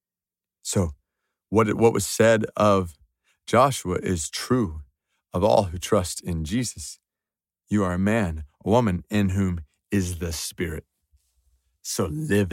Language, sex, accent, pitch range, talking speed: English, male, American, 90-115 Hz, 135 wpm